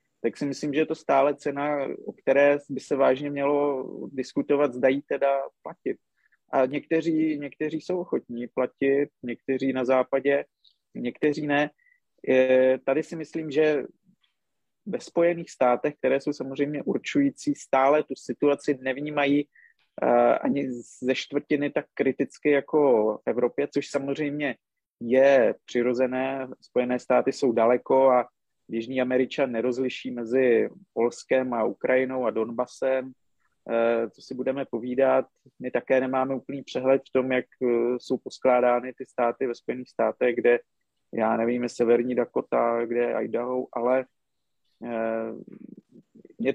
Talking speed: 125 wpm